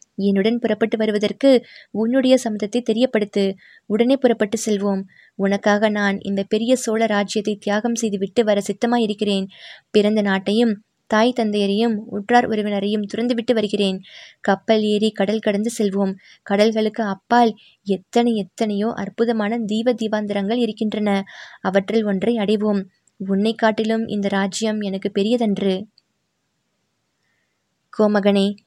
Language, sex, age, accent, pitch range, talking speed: Tamil, female, 20-39, native, 200-230 Hz, 105 wpm